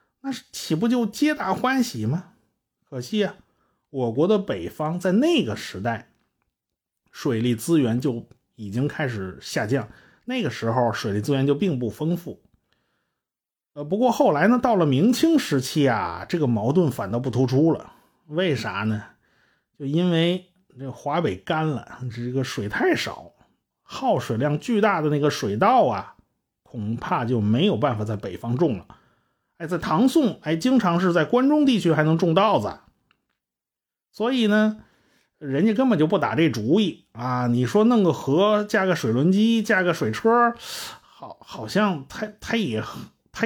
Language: Chinese